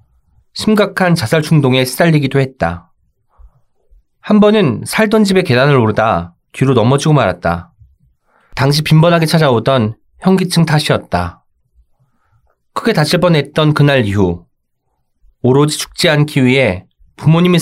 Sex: male